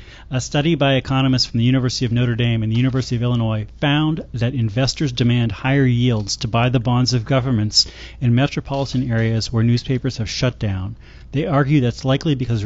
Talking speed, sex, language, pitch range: 190 wpm, male, English, 115-135 Hz